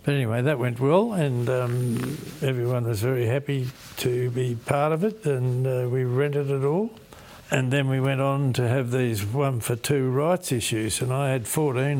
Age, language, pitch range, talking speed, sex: 60-79, English, 105-130 Hz, 195 wpm, male